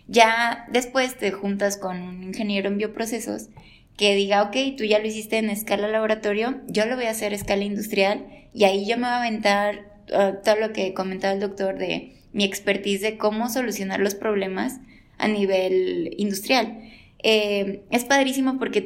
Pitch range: 200-230 Hz